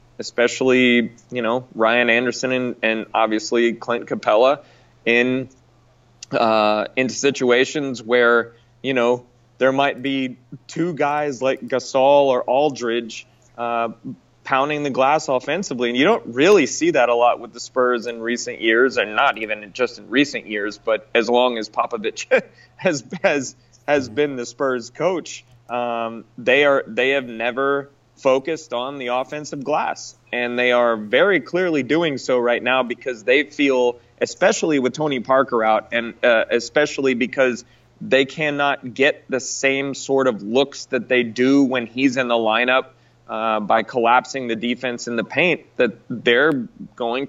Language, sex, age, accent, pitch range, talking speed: English, male, 20-39, American, 120-140 Hz, 155 wpm